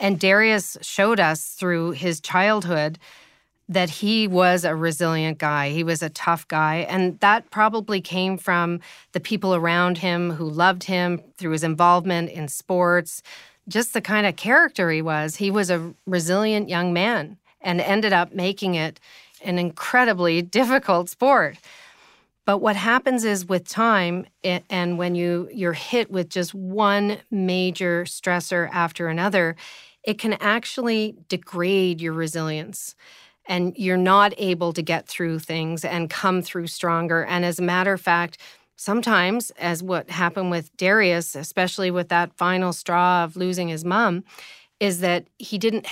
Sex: female